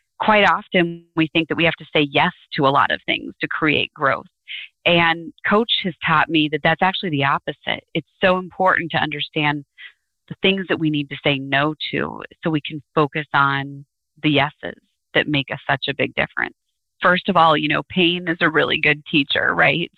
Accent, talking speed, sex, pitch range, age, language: American, 205 wpm, female, 150-180 Hz, 30-49, English